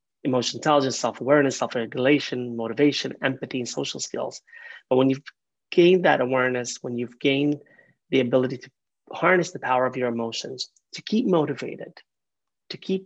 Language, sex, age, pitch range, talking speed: English, male, 30-49, 130-155 Hz, 145 wpm